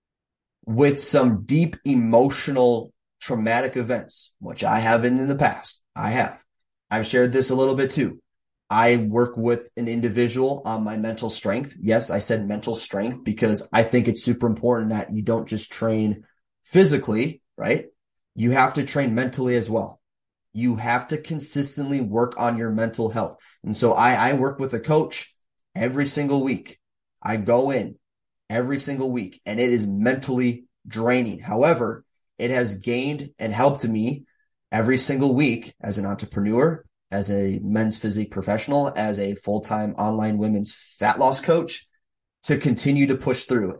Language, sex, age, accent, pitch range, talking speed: English, male, 30-49, American, 110-135 Hz, 160 wpm